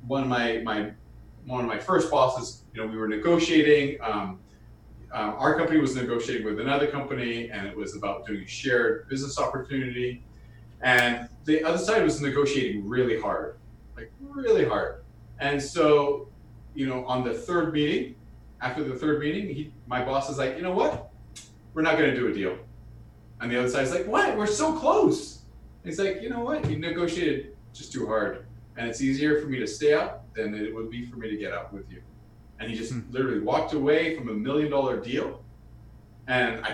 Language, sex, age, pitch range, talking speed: English, male, 30-49, 110-150 Hz, 200 wpm